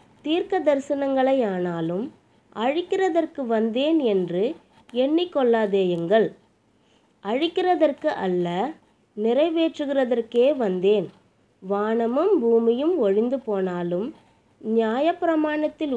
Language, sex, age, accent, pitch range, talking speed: Tamil, female, 20-39, native, 210-310 Hz, 55 wpm